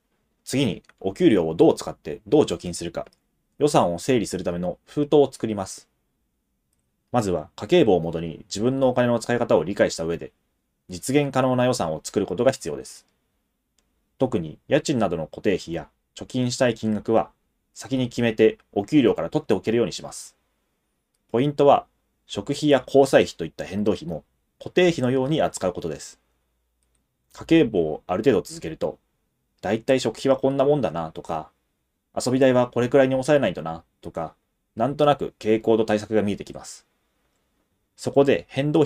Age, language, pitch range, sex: 30-49, Japanese, 85-130 Hz, male